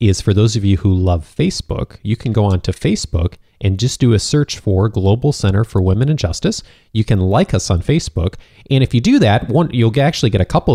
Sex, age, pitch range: male, 30-49, 95-110 Hz